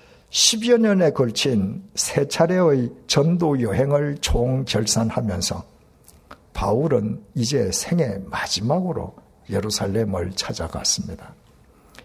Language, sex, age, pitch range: Korean, male, 60-79, 105-150 Hz